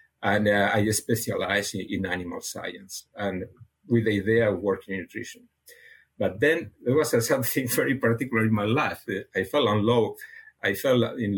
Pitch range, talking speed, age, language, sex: 105-165 Hz, 175 wpm, 50-69, English, male